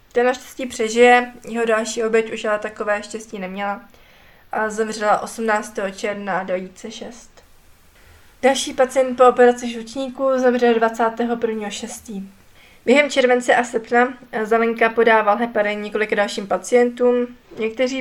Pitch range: 210-245 Hz